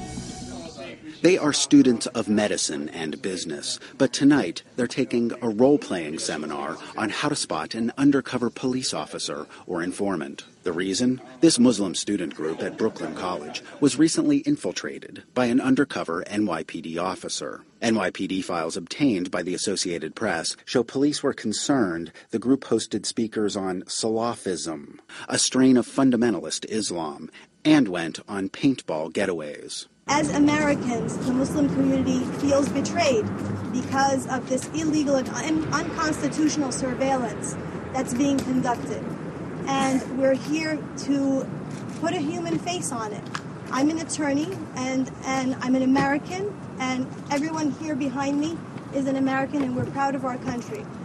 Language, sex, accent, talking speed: English, male, American, 140 wpm